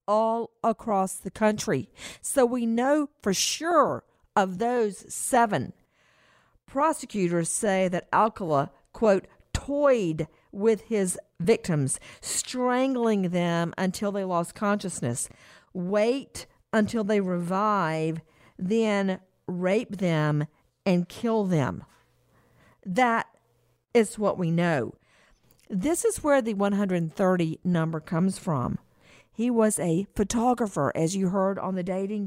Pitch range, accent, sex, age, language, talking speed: 170-225 Hz, American, female, 50-69, English, 110 wpm